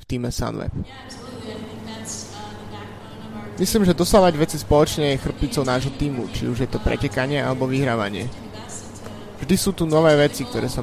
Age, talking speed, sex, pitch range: 20-39, 135 wpm, male, 105-135 Hz